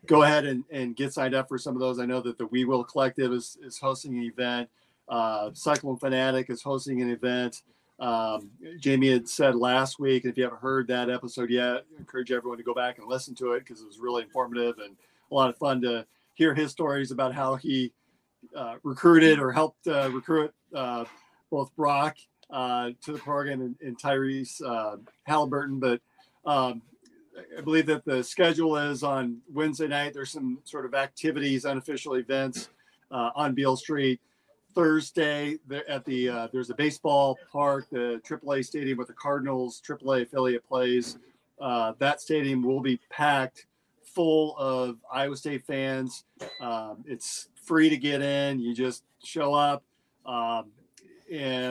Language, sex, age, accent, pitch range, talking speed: English, male, 40-59, American, 125-145 Hz, 175 wpm